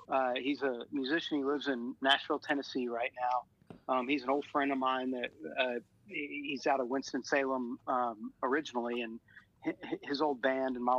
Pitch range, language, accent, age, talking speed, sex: 125-145 Hz, English, American, 30-49, 180 wpm, male